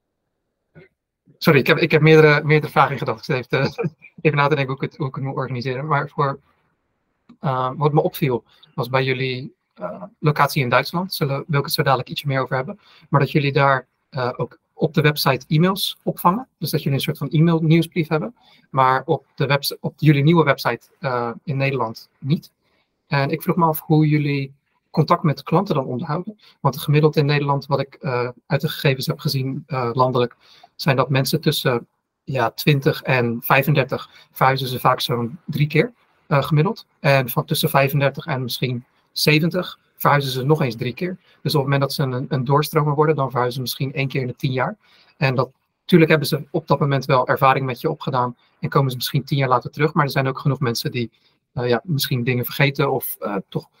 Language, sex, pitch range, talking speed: Dutch, male, 135-160 Hz, 205 wpm